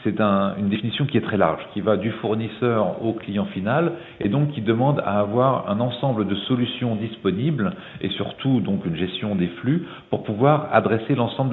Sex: male